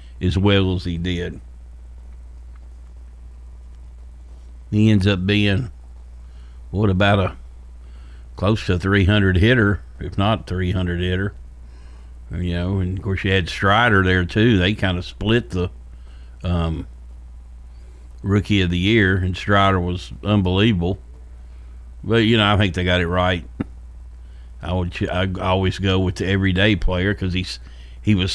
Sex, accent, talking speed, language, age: male, American, 140 wpm, English, 50-69